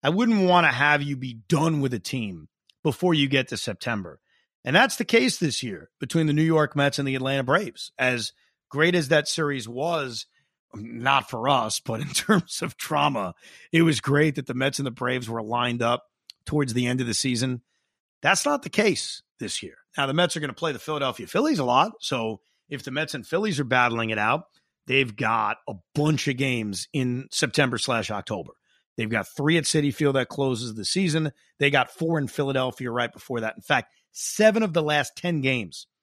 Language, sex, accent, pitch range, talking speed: English, male, American, 125-160 Hz, 210 wpm